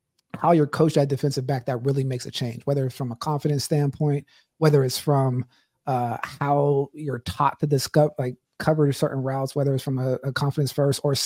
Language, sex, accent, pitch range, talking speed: English, male, American, 140-170 Hz, 195 wpm